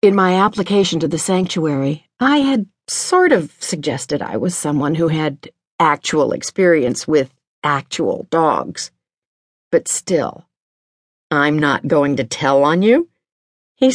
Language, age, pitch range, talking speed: English, 50-69, 150-205 Hz, 135 wpm